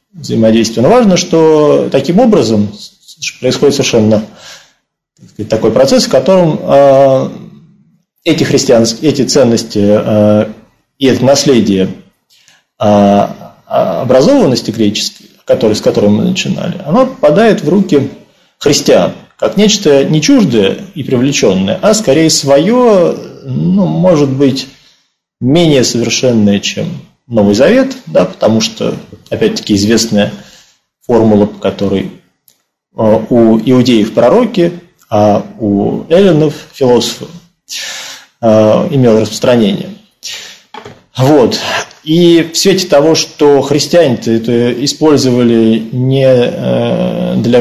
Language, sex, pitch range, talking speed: Russian, male, 110-165 Hz, 95 wpm